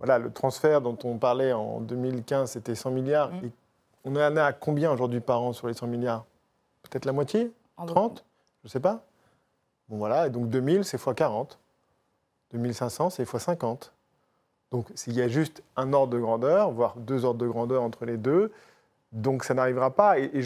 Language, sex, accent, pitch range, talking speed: French, male, French, 120-150 Hz, 190 wpm